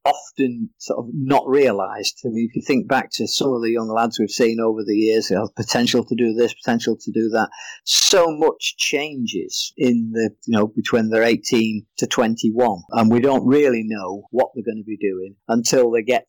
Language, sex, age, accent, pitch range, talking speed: English, male, 50-69, British, 110-135 Hz, 220 wpm